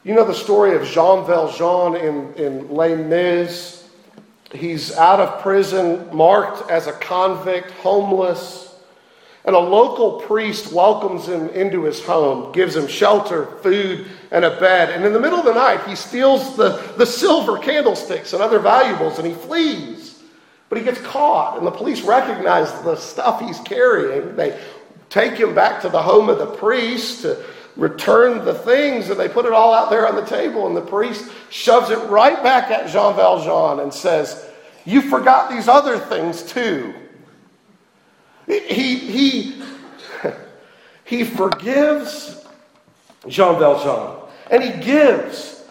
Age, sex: 50-69, male